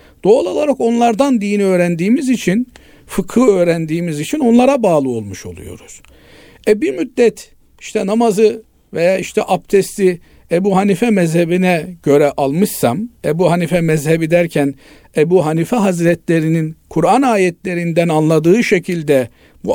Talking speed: 115 wpm